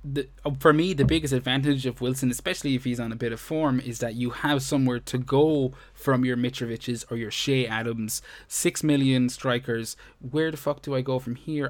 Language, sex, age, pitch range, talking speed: English, male, 20-39, 120-140 Hz, 205 wpm